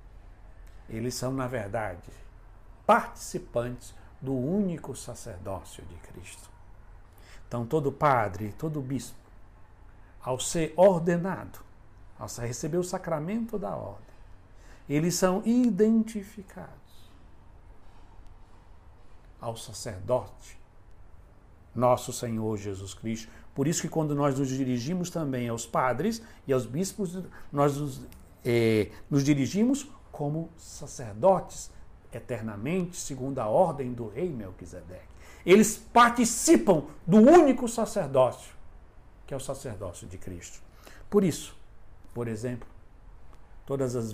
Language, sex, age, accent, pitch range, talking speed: Portuguese, male, 60-79, Brazilian, 100-150 Hz, 105 wpm